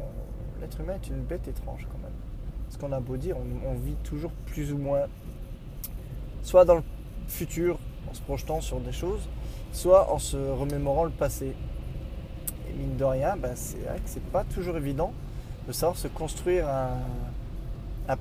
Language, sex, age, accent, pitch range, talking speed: French, male, 20-39, French, 125-155 Hz, 170 wpm